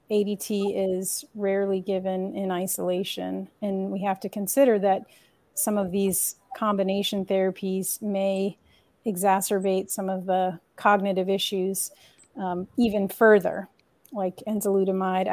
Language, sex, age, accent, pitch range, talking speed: English, female, 40-59, American, 185-205 Hz, 115 wpm